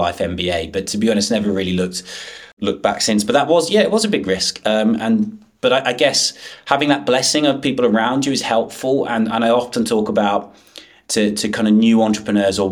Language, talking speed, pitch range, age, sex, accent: English, 230 wpm, 105-120 Hz, 20-39, male, British